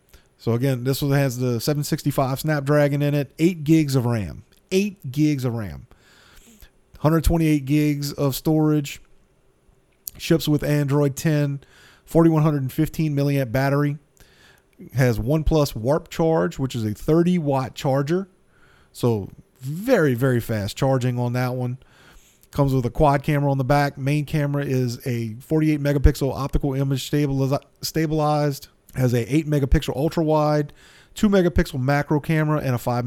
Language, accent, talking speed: English, American, 140 wpm